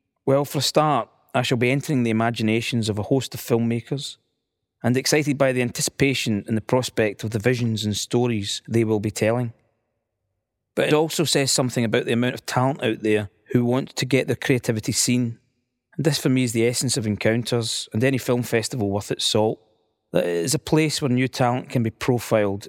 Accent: British